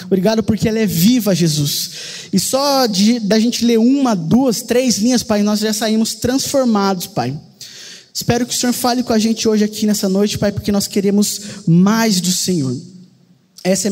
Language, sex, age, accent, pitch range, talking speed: Portuguese, male, 20-39, Brazilian, 190-240 Hz, 190 wpm